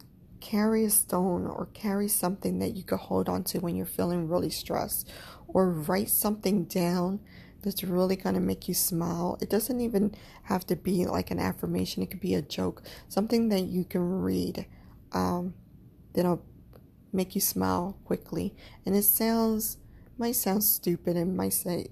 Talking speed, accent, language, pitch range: 165 wpm, American, English, 160-190 Hz